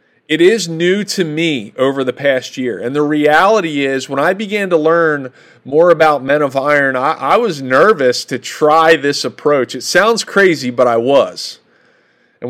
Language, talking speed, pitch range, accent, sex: English, 180 wpm, 130-170 Hz, American, male